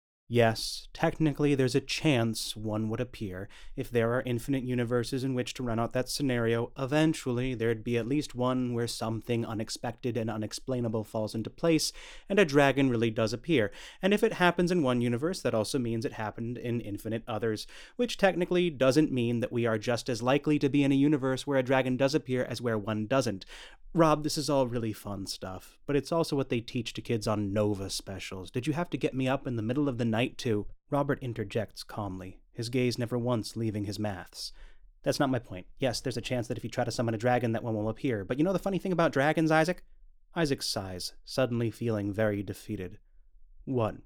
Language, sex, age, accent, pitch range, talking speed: English, male, 30-49, American, 110-135 Hz, 215 wpm